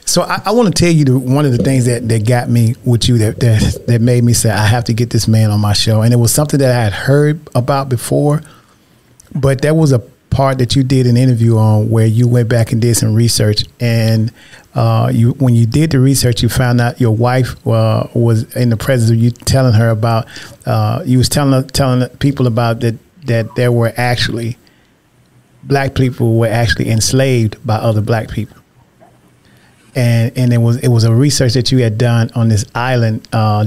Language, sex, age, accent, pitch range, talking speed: English, male, 40-59, American, 115-130 Hz, 215 wpm